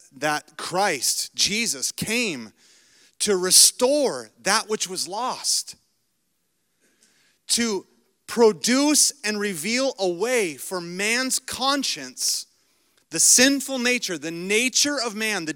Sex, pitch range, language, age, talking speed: male, 155-250 Hz, English, 30-49, 105 wpm